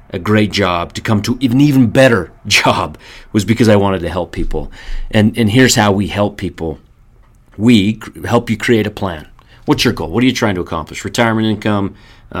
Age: 30-49